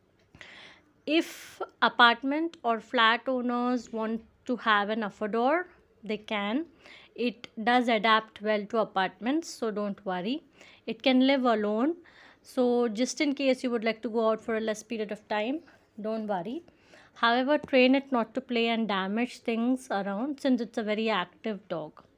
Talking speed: 160 wpm